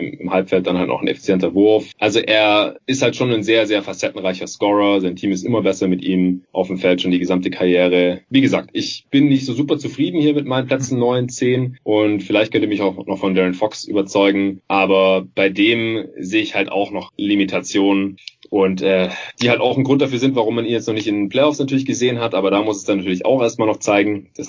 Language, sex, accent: German, male, German